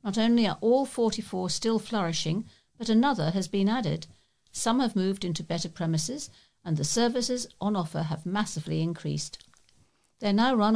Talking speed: 165 wpm